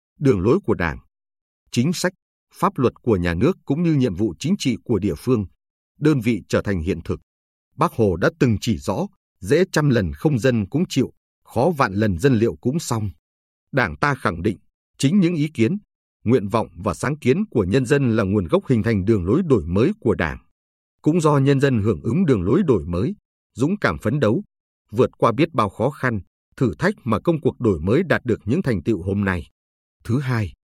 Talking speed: 215 wpm